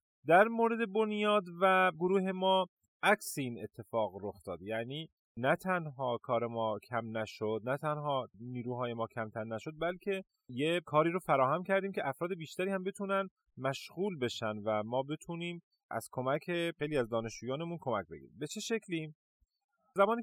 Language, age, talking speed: Persian, 30-49, 150 wpm